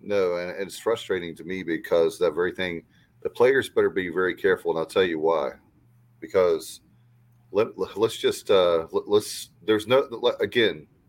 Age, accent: 40-59, American